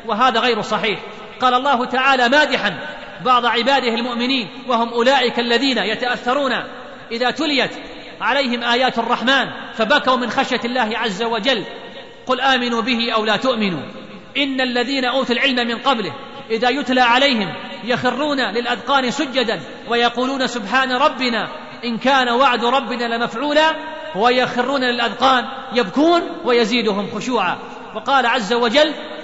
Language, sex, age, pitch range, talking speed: Arabic, male, 40-59, 235-265 Hz, 120 wpm